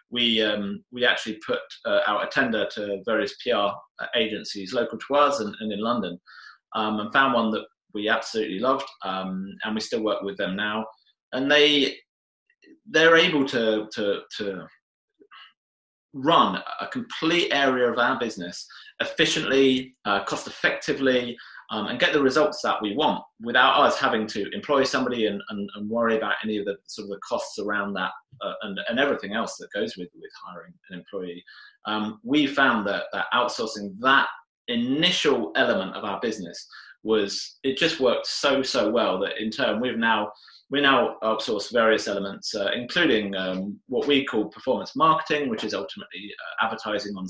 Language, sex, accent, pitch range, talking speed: English, male, British, 105-140 Hz, 175 wpm